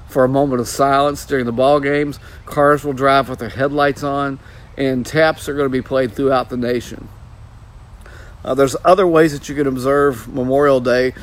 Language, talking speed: English, 190 wpm